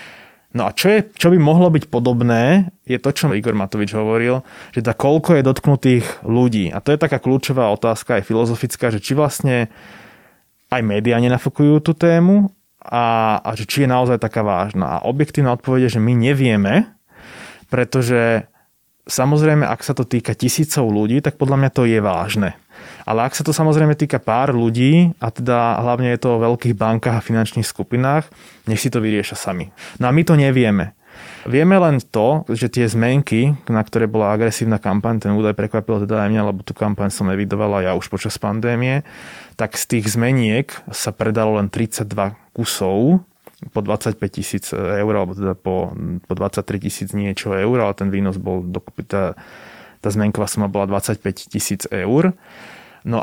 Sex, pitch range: male, 105-125 Hz